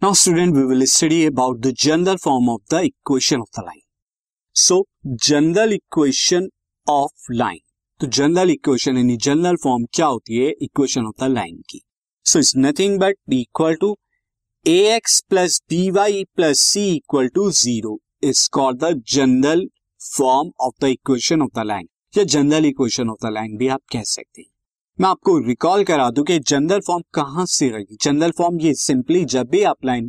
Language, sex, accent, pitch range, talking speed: Hindi, male, native, 130-195 Hz, 165 wpm